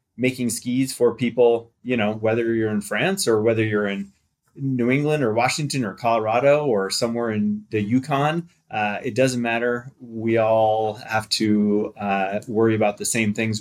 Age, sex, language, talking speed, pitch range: 20-39, male, English, 170 wpm, 105-120 Hz